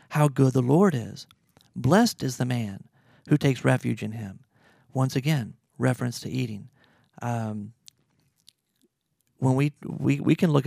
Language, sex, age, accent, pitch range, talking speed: English, male, 40-59, American, 125-155 Hz, 145 wpm